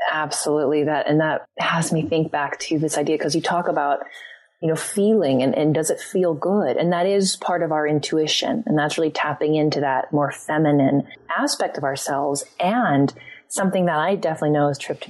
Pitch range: 150-190 Hz